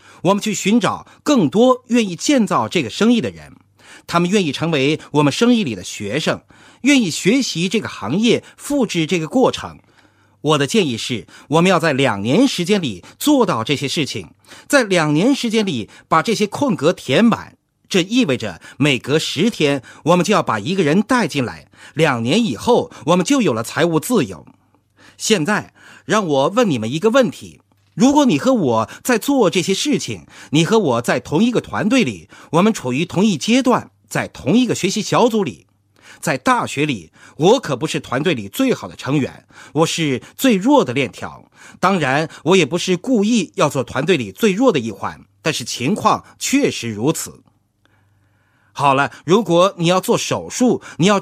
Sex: male